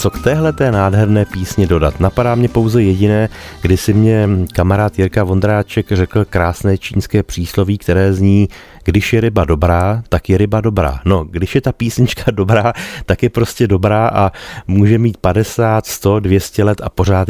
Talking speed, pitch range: 170 wpm, 85-105 Hz